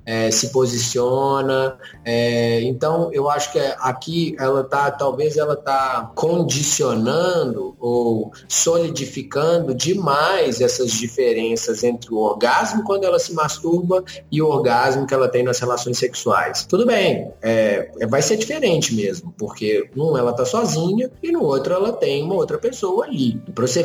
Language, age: Portuguese, 20-39